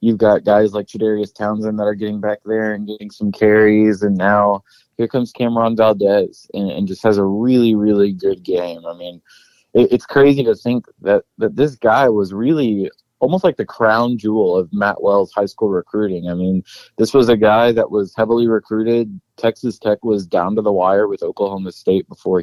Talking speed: 200 wpm